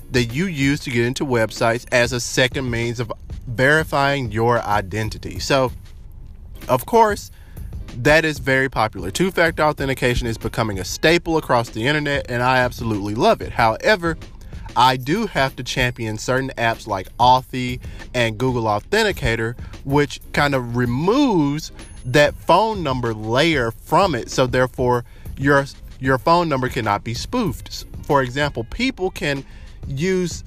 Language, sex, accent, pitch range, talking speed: English, male, American, 105-140 Hz, 145 wpm